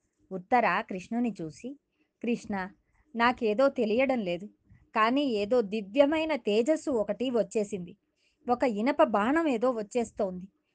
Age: 20-39